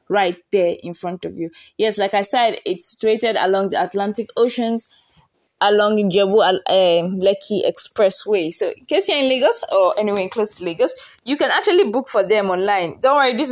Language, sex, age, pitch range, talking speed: English, female, 20-39, 185-255 Hz, 190 wpm